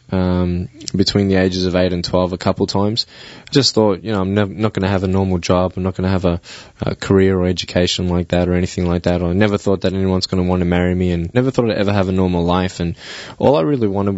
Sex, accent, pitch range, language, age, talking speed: male, Australian, 90-100 Hz, English, 20-39, 280 wpm